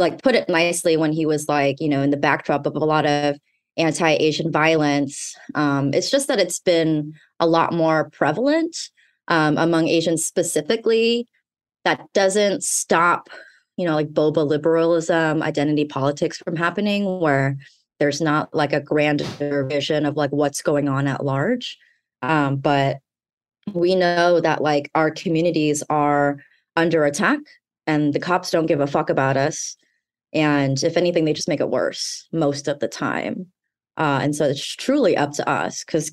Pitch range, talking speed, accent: 145-170 Hz, 165 wpm, American